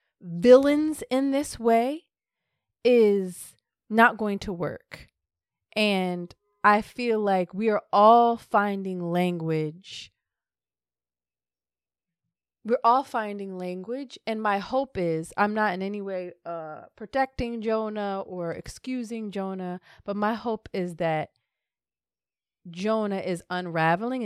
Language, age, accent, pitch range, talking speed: English, 30-49, American, 170-220 Hz, 110 wpm